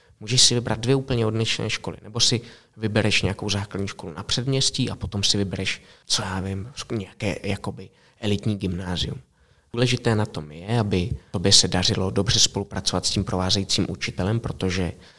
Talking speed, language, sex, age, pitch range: 160 wpm, Czech, male, 20-39, 90-110 Hz